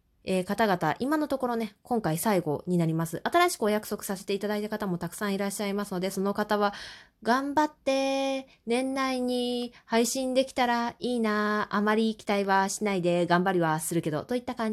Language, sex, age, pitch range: Japanese, female, 20-39, 190-250 Hz